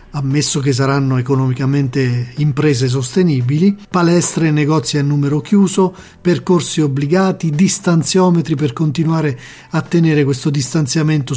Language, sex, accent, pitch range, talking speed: Italian, male, native, 135-160 Hz, 110 wpm